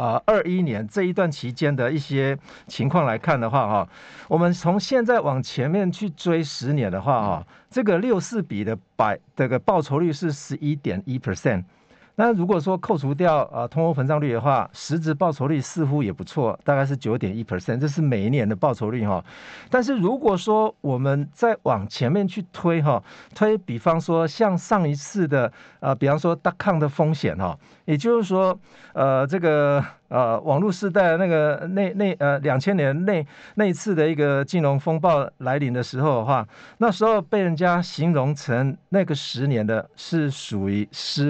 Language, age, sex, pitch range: Chinese, 50-69, male, 130-180 Hz